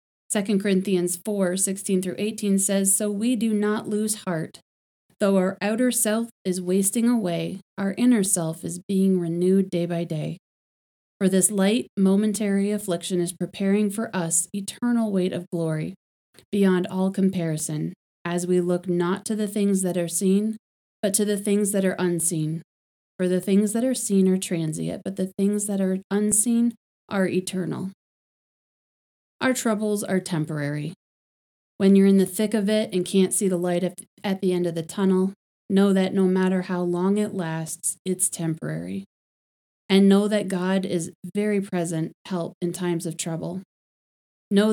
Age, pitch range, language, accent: 30-49, 175-200 Hz, English, American